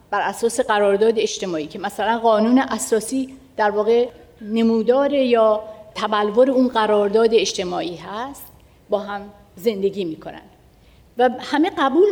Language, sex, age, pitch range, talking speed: Persian, female, 50-69, 205-265 Hz, 120 wpm